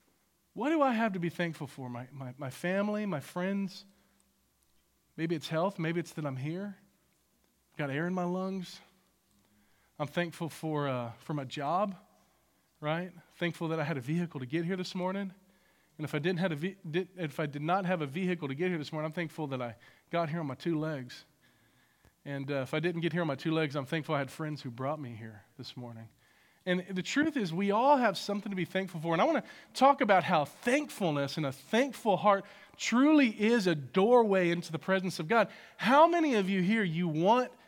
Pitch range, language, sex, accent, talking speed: 155-205 Hz, English, male, American, 220 wpm